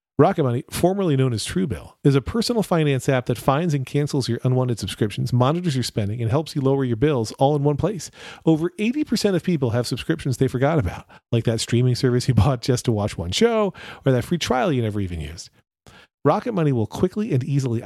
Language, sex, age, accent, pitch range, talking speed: English, male, 40-59, American, 120-165 Hz, 220 wpm